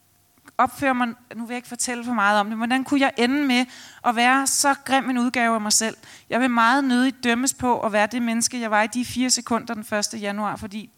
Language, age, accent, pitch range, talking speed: Danish, 30-49, native, 225-255 Hz, 245 wpm